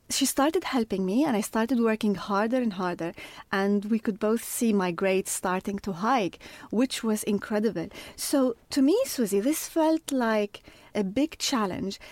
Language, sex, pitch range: English, female, 195-255 Hz